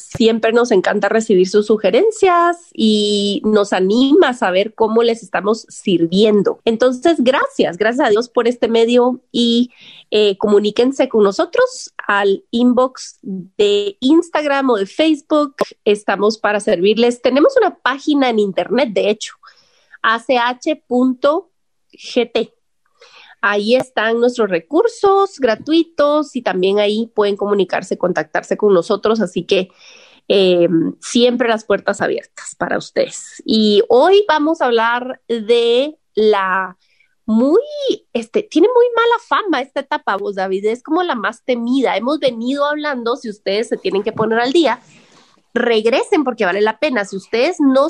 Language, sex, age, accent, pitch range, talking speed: Spanish, female, 30-49, Mexican, 210-295 Hz, 135 wpm